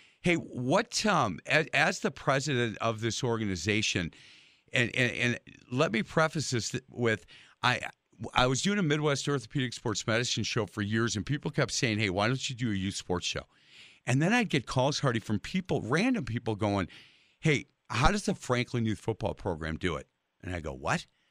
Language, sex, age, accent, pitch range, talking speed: English, male, 50-69, American, 110-150 Hz, 190 wpm